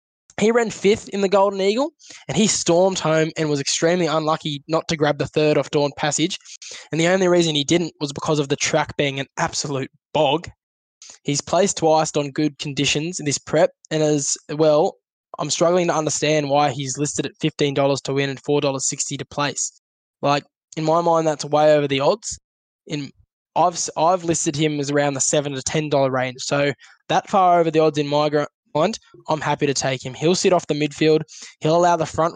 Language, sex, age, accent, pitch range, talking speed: English, male, 10-29, Australian, 145-165 Hz, 200 wpm